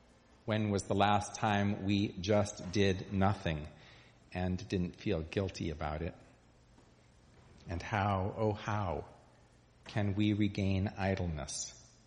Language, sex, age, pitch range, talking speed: English, male, 40-59, 95-140 Hz, 115 wpm